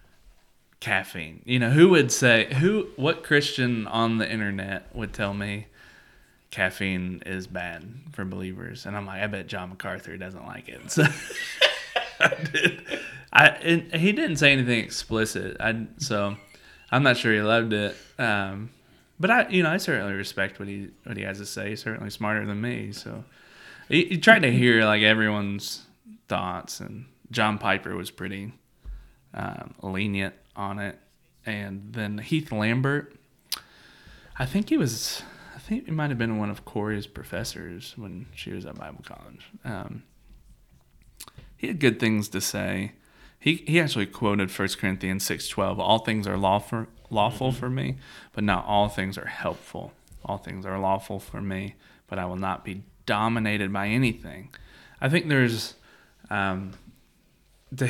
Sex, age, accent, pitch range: male, 20-39, American, 100-125 Hz